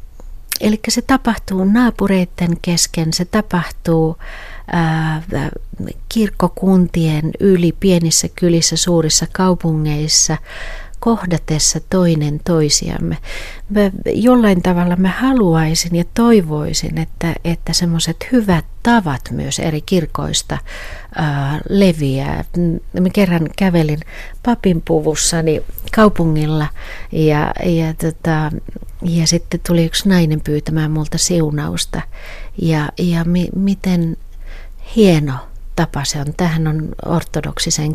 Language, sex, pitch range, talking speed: Finnish, female, 150-180 Hz, 95 wpm